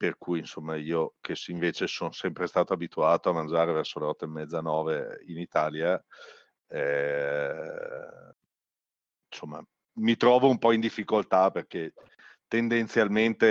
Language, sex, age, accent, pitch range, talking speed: Italian, male, 50-69, native, 85-110 Hz, 130 wpm